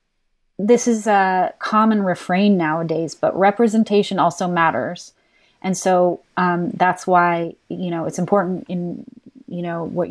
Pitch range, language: 170-195 Hz, English